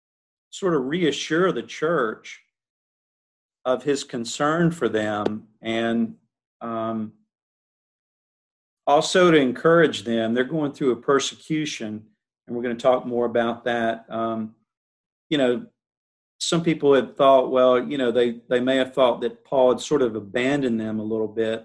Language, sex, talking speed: English, male, 150 wpm